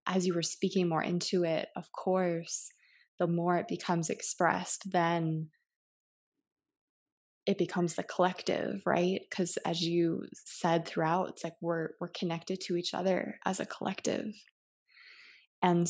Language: English